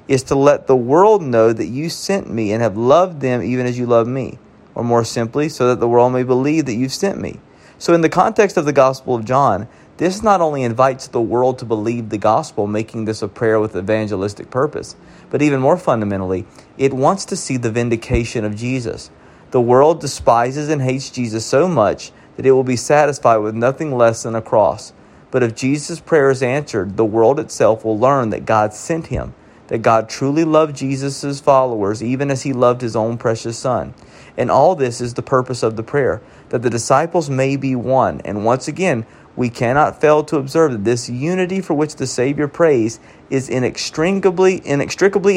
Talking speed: 200 wpm